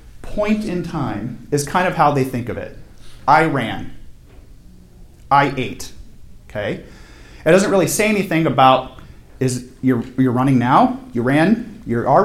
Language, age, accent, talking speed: English, 40-59, American, 150 wpm